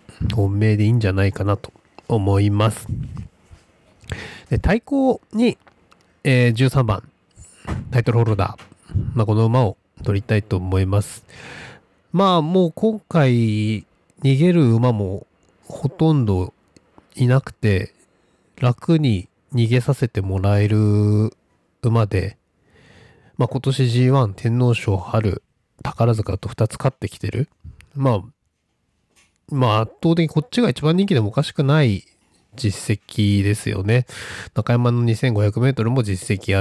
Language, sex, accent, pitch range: Japanese, male, native, 105-140 Hz